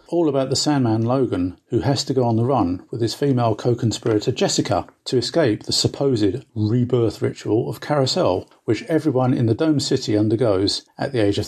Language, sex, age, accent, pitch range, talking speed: English, male, 50-69, British, 115-145 Hz, 190 wpm